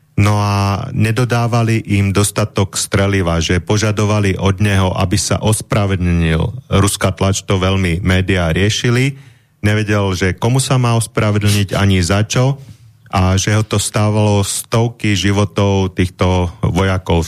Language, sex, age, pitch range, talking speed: Slovak, male, 30-49, 95-110 Hz, 130 wpm